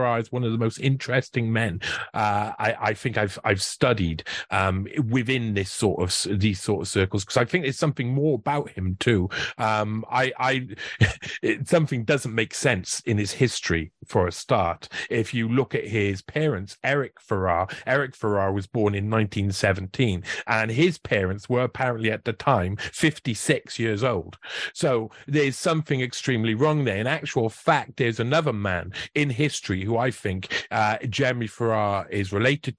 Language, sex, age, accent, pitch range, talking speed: English, male, 40-59, British, 105-135 Hz, 170 wpm